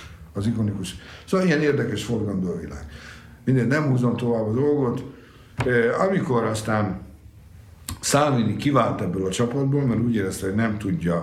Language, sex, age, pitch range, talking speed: Hungarian, male, 60-79, 95-150 Hz, 150 wpm